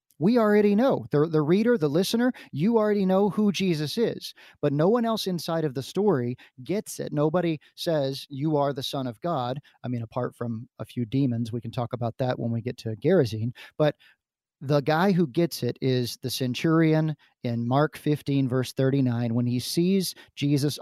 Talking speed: 195 wpm